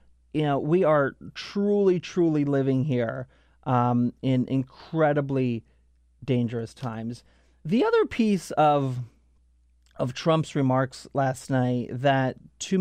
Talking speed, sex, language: 110 wpm, male, English